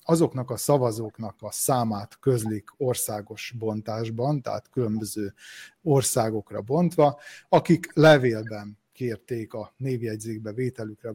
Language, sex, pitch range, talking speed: Hungarian, male, 110-140 Hz, 95 wpm